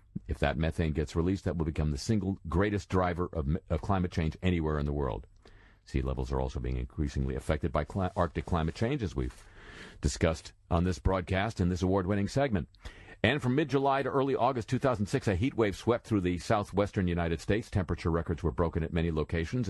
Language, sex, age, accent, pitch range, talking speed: English, male, 50-69, American, 85-110 Hz, 195 wpm